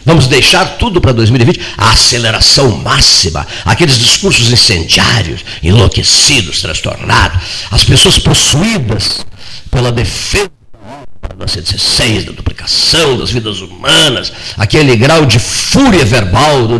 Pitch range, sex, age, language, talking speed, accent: 100-130 Hz, male, 60-79, Portuguese, 110 wpm, Brazilian